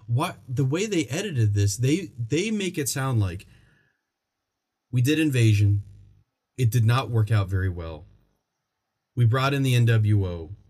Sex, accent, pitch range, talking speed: male, American, 105-135 Hz, 150 wpm